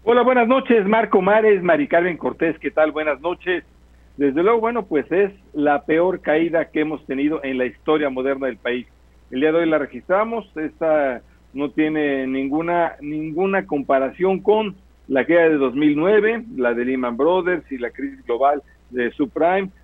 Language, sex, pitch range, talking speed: Spanish, male, 135-175 Hz, 170 wpm